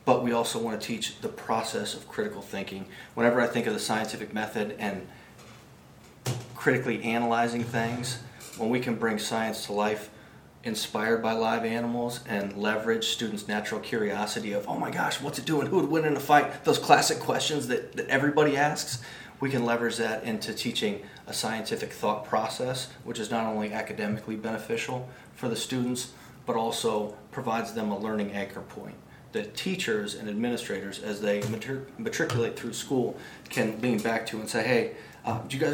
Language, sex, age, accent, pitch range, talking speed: English, male, 30-49, American, 110-125 Hz, 175 wpm